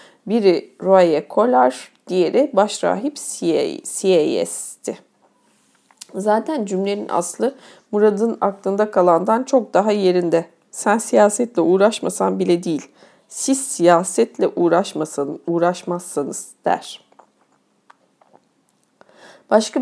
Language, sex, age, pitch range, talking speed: Turkish, female, 40-59, 175-220 Hz, 75 wpm